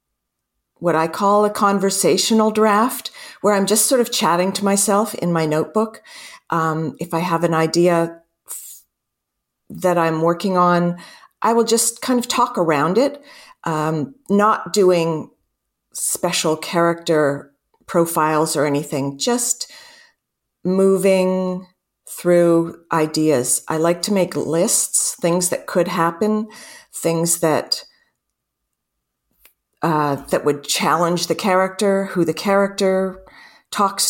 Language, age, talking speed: English, 50-69, 120 wpm